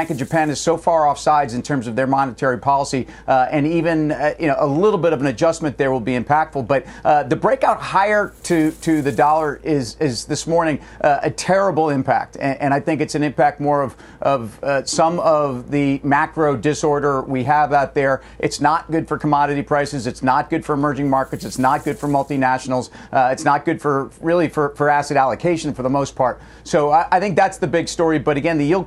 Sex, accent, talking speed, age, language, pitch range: male, American, 225 wpm, 50-69, English, 140-160 Hz